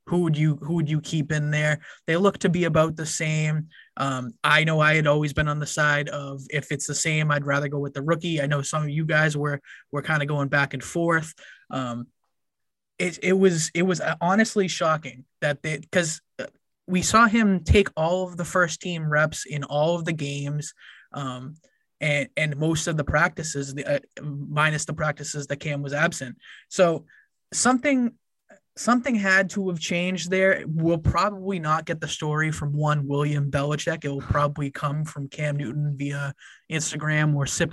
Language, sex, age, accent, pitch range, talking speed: English, male, 20-39, American, 145-175 Hz, 190 wpm